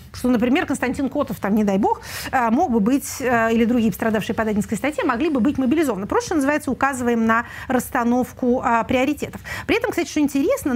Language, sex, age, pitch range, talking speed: Russian, female, 30-49, 235-305 Hz, 190 wpm